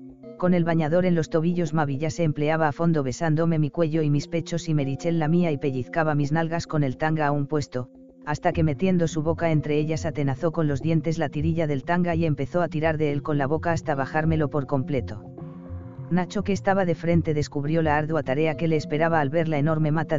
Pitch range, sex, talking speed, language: 145-165 Hz, female, 225 wpm, Spanish